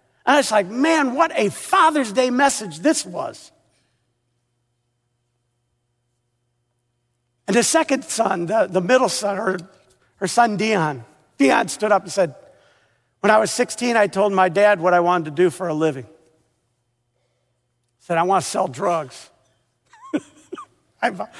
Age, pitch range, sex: 50-69, 185-270 Hz, male